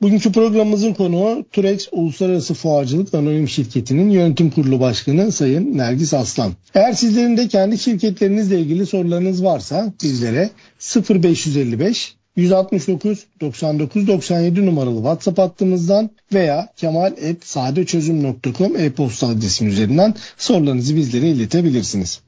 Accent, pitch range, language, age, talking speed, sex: native, 140-190 Hz, Turkish, 60-79, 95 wpm, male